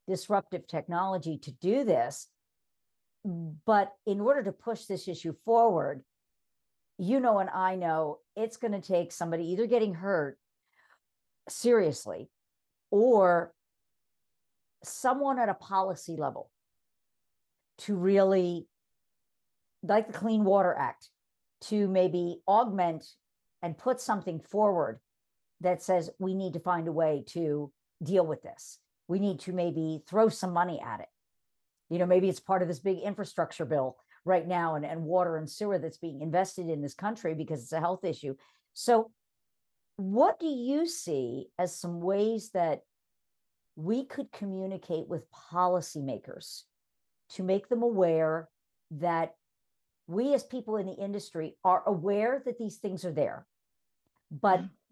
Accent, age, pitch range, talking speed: American, 50-69, 165-210 Hz, 140 wpm